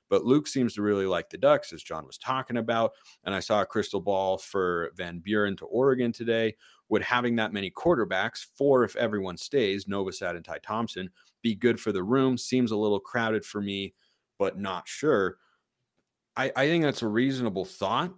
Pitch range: 105-140 Hz